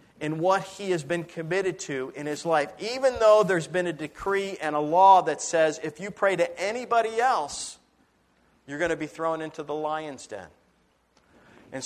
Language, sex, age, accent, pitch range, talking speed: English, male, 50-69, American, 150-195 Hz, 185 wpm